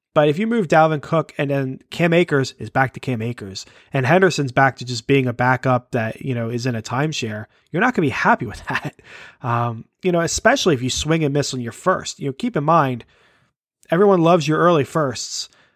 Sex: male